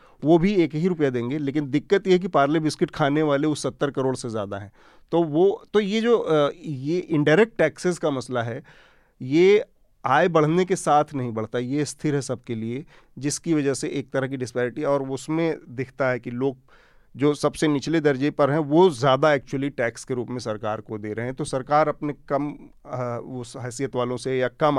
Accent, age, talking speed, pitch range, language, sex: native, 40-59, 205 wpm, 125-155 Hz, Hindi, male